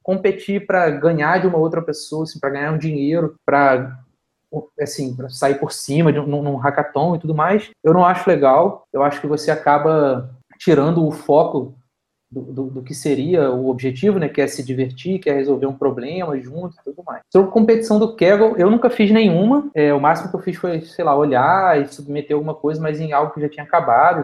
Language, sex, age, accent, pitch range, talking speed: Portuguese, male, 20-39, Brazilian, 145-195 Hz, 215 wpm